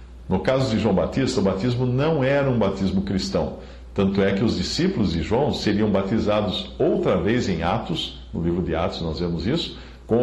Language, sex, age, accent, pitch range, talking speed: English, male, 60-79, Brazilian, 80-130 Hz, 195 wpm